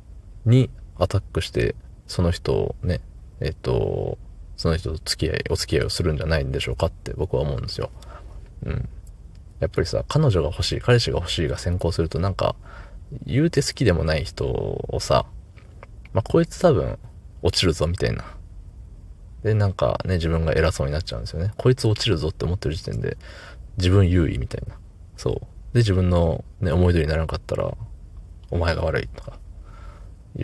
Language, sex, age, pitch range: Japanese, male, 20-39, 85-105 Hz